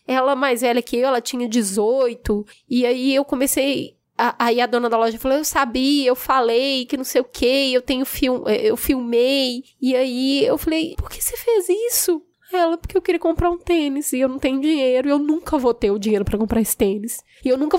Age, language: 10-29, Portuguese